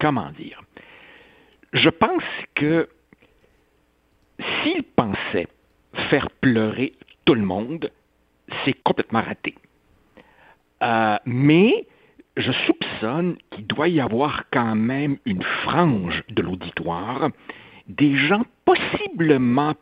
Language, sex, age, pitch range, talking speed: French, male, 60-79, 115-150 Hz, 95 wpm